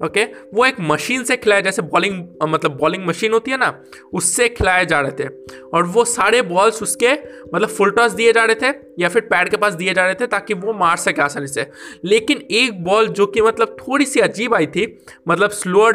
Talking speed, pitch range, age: 225 wpm, 165-225 Hz, 20-39